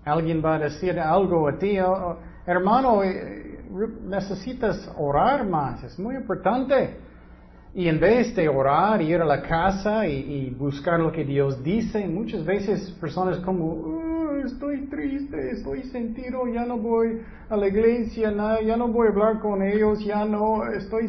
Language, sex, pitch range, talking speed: Spanish, male, 155-225 Hz, 165 wpm